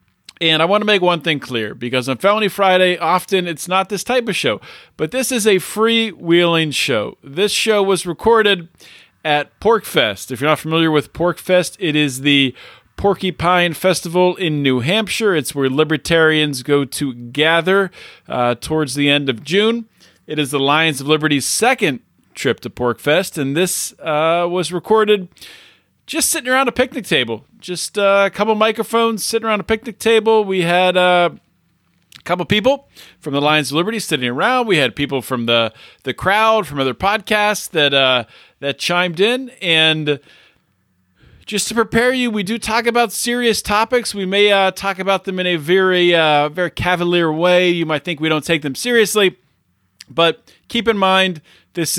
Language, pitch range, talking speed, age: English, 150-205 Hz, 180 wpm, 40-59